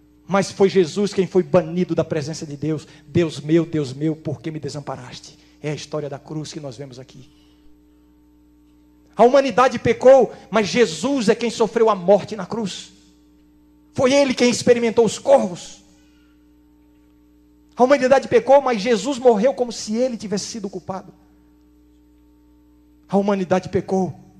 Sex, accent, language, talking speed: male, Brazilian, Portuguese, 150 wpm